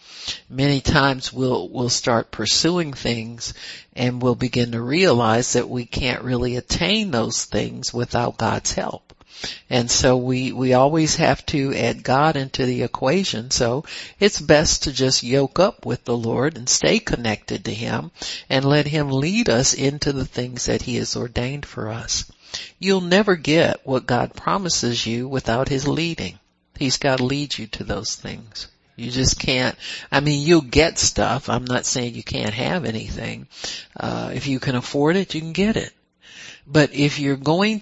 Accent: American